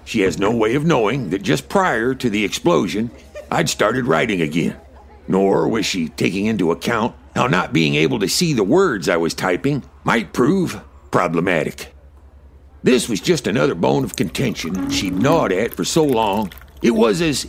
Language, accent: English, American